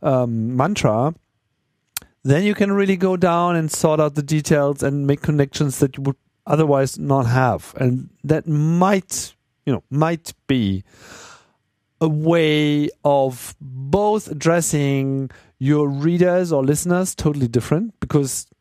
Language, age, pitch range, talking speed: English, 40-59, 130-170 Hz, 130 wpm